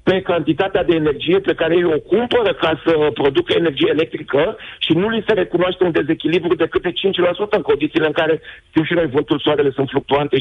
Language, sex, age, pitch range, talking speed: Romanian, male, 50-69, 155-225 Hz, 200 wpm